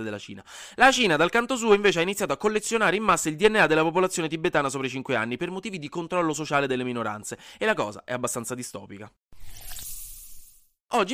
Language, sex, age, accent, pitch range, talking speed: Italian, male, 20-39, native, 120-175 Hz, 200 wpm